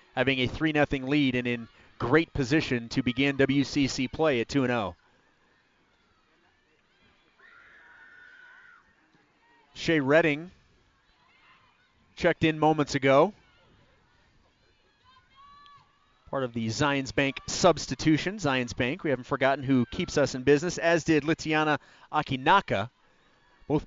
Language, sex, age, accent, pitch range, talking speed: English, male, 30-49, American, 125-155 Hz, 110 wpm